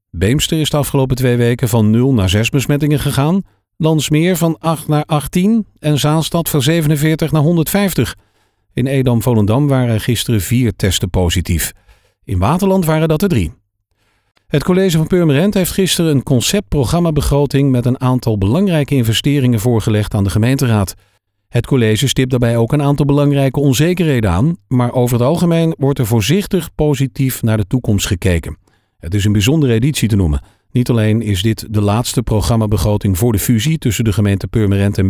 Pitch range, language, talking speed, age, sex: 110-155 Hz, Dutch, 170 wpm, 50-69, male